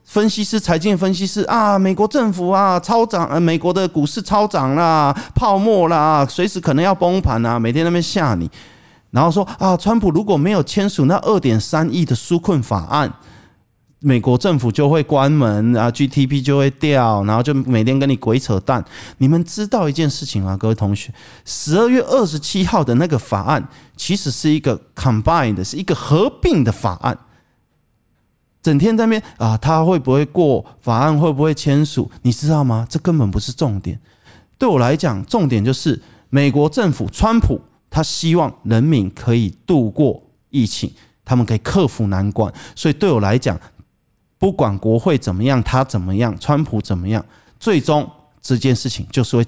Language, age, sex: Chinese, 30-49, male